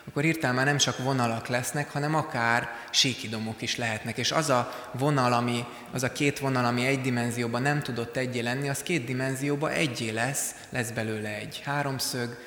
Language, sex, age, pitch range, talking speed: Hungarian, male, 20-39, 120-145 Hz, 180 wpm